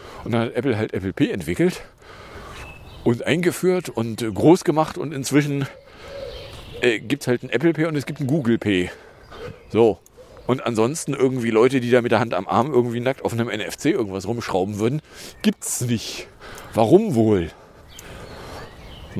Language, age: German, 50-69